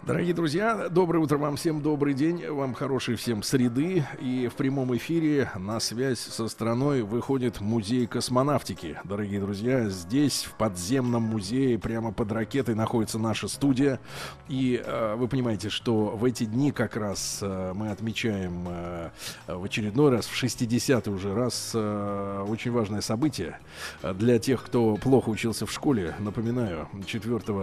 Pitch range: 105-130 Hz